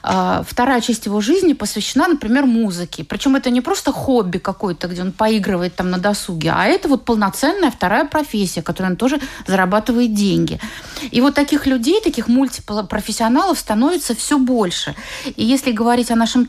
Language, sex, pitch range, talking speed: Russian, female, 205-255 Hz, 165 wpm